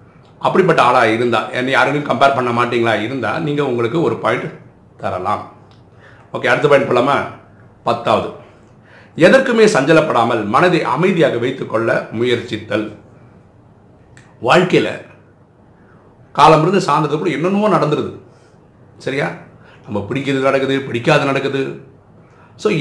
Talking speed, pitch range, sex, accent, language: 105 wpm, 120-165 Hz, male, native, Tamil